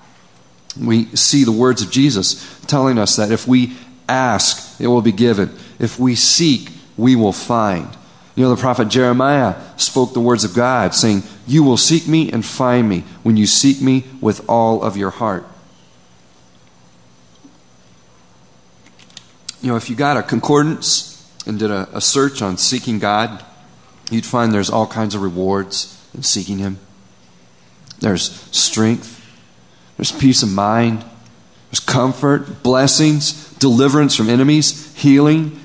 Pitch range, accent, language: 95-135 Hz, American, English